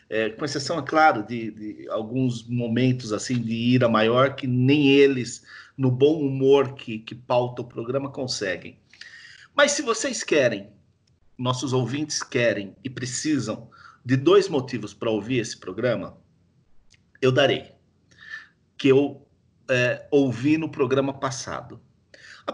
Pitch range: 120-150 Hz